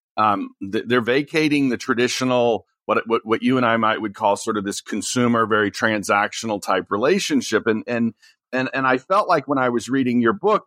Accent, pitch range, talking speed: American, 110-150 Hz, 195 wpm